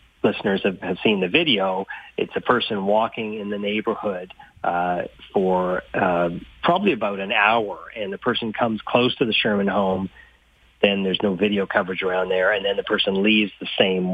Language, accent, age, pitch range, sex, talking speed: English, American, 40-59, 95-115 Hz, male, 180 wpm